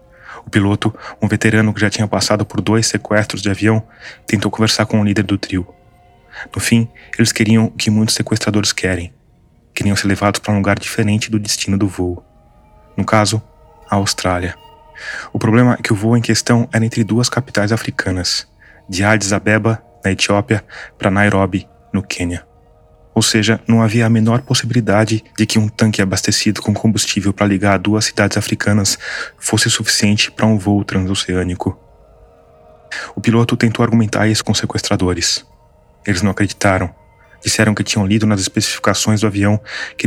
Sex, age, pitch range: male, 20-39, 100-110 Hz